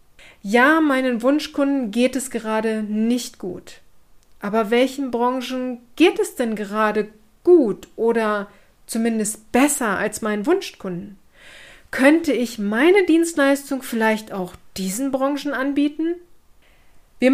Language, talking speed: German, 110 wpm